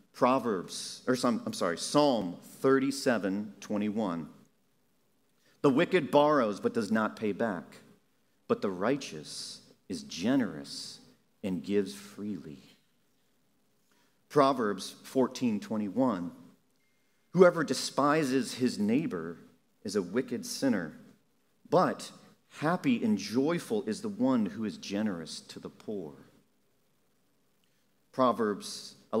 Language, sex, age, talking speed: English, male, 40-59, 100 wpm